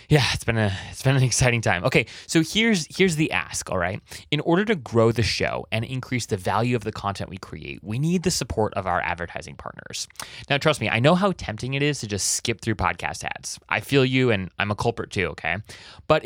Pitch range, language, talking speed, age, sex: 105-135 Hz, English, 240 wpm, 20-39, male